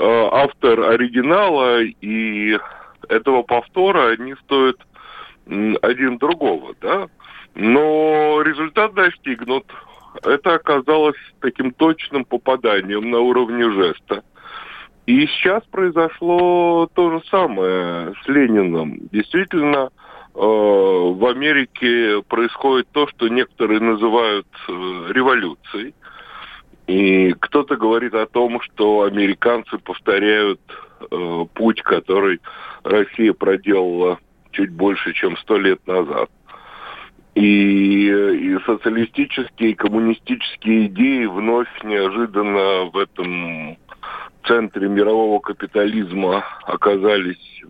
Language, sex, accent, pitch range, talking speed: Russian, male, native, 105-155 Hz, 90 wpm